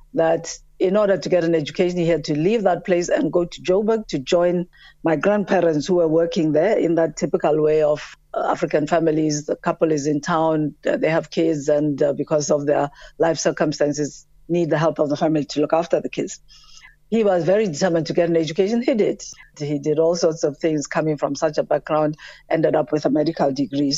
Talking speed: 210 wpm